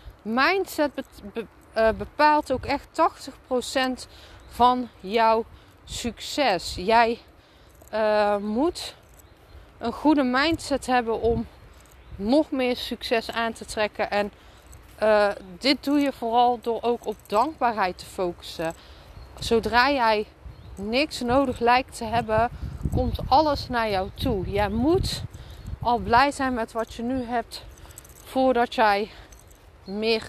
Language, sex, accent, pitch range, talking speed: Dutch, female, Dutch, 205-255 Hz, 115 wpm